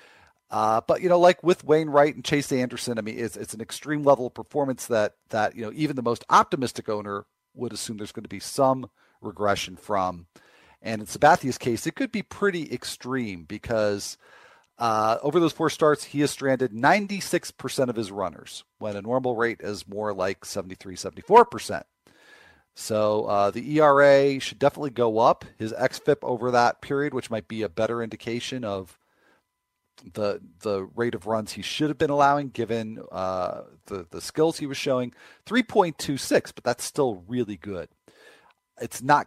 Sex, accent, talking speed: male, American, 175 wpm